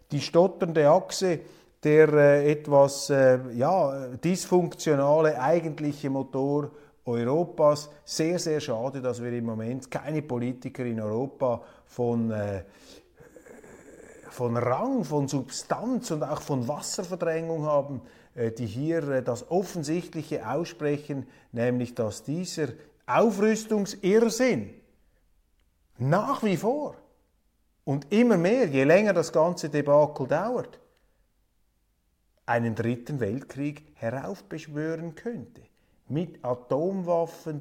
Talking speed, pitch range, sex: 100 wpm, 125-170 Hz, male